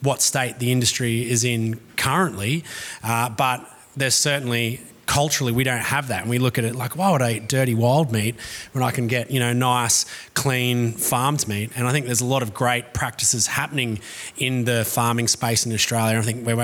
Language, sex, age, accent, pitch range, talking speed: English, male, 30-49, Australian, 120-155 Hz, 210 wpm